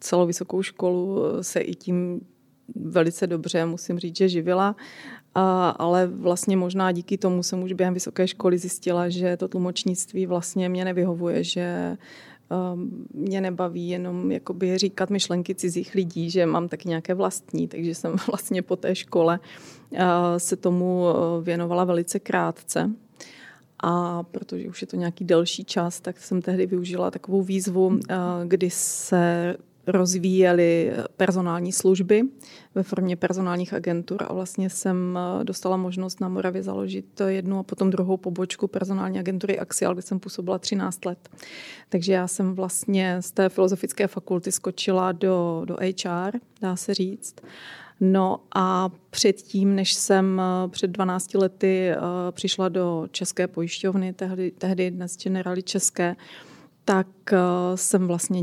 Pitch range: 175-190 Hz